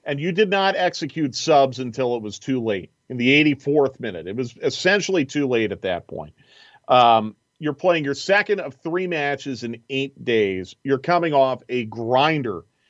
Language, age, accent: English, 40-59, American